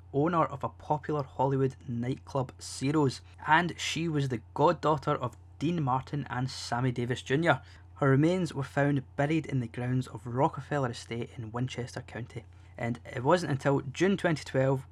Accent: British